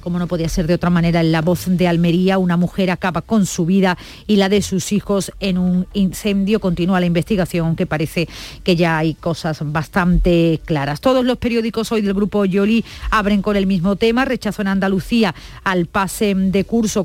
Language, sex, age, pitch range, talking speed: Spanish, female, 40-59, 185-225 Hz, 195 wpm